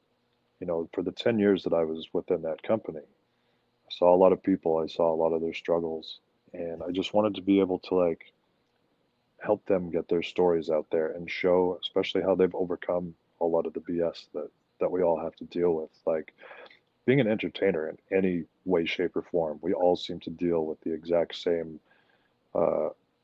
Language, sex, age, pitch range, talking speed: English, male, 30-49, 85-95 Hz, 205 wpm